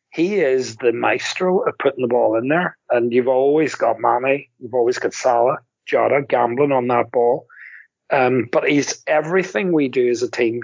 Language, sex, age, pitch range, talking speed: English, male, 40-59, 125-155 Hz, 185 wpm